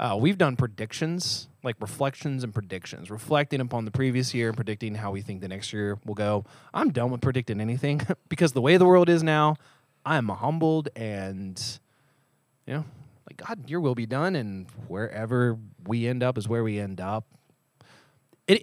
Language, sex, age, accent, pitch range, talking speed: English, male, 20-39, American, 110-150 Hz, 185 wpm